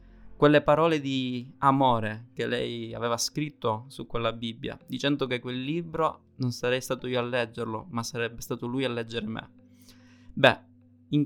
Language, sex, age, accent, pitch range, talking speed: Italian, male, 20-39, native, 120-140 Hz, 160 wpm